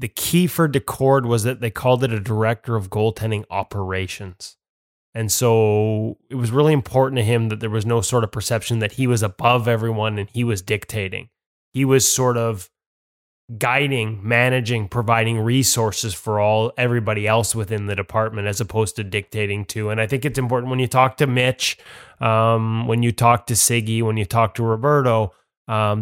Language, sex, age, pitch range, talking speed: English, male, 20-39, 105-130 Hz, 185 wpm